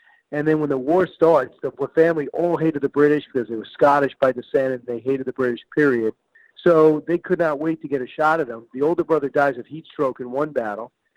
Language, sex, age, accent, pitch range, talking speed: English, male, 50-69, American, 130-160 Hz, 240 wpm